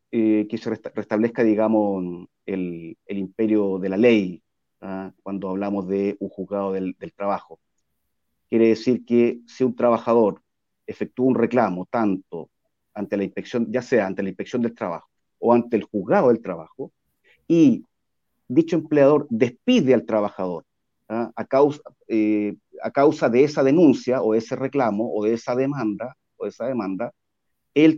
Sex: male